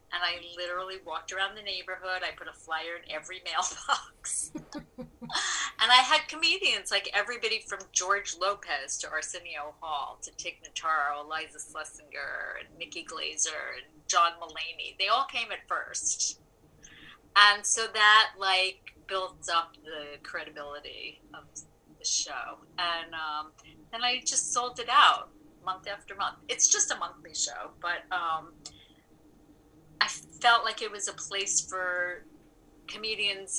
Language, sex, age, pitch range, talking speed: English, female, 30-49, 160-220 Hz, 145 wpm